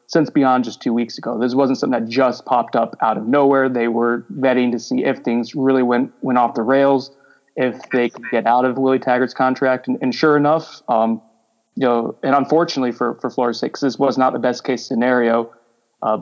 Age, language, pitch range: 20-39, English, 120-140 Hz